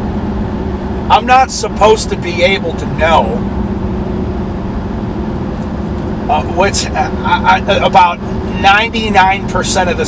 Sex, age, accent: male, 40-59, American